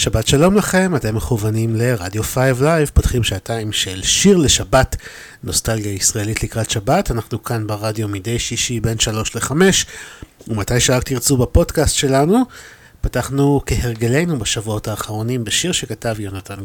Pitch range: 105-140 Hz